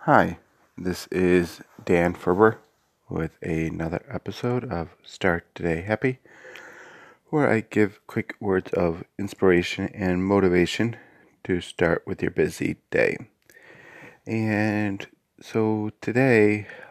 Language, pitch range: English, 90-105 Hz